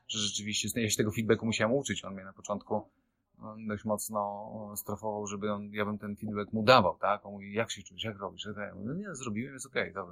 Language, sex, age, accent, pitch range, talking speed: Polish, male, 30-49, native, 95-110 Hz, 230 wpm